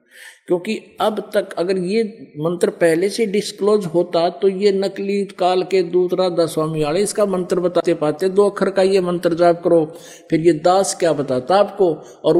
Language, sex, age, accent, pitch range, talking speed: Hindi, male, 50-69, native, 165-210 Hz, 145 wpm